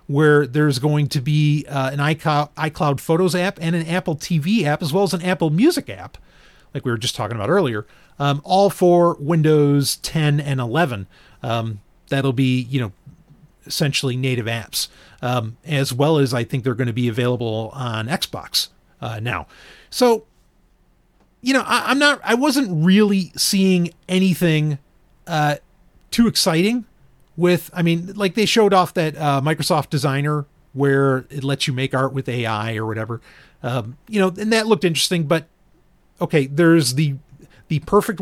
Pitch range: 135-175 Hz